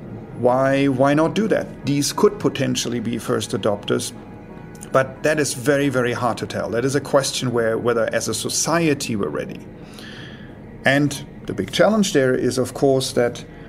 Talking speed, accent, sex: 170 wpm, German, male